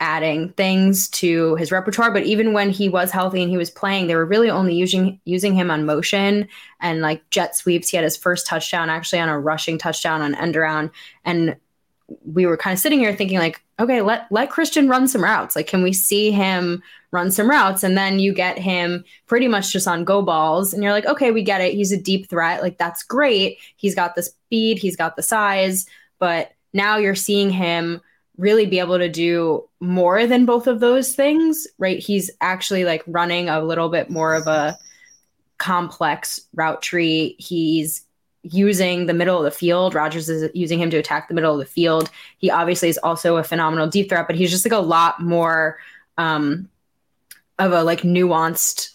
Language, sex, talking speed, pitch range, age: English, female, 205 wpm, 165-195 Hz, 10-29